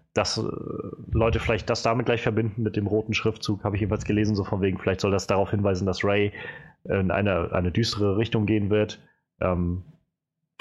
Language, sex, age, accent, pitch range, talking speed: German, male, 30-49, German, 95-120 Hz, 185 wpm